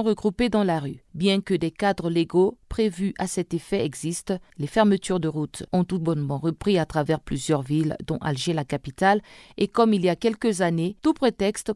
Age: 40-59